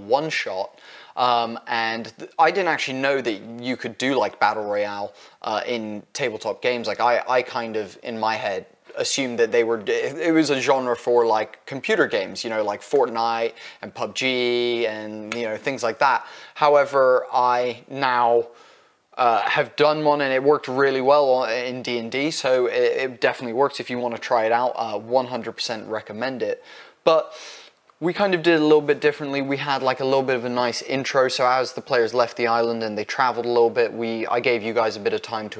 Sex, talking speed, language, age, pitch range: male, 210 wpm, English, 20-39, 115-140 Hz